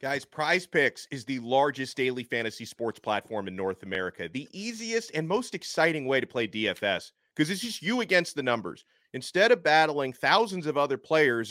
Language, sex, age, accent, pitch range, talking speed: English, male, 30-49, American, 120-170 Hz, 190 wpm